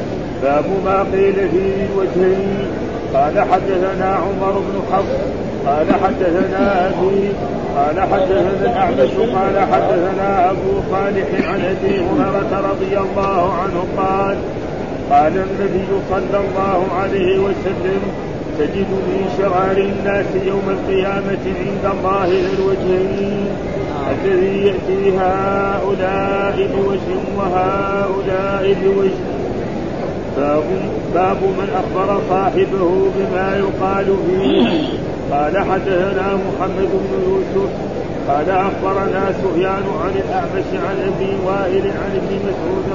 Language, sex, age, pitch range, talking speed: Arabic, male, 50-69, 190-195 Hz, 95 wpm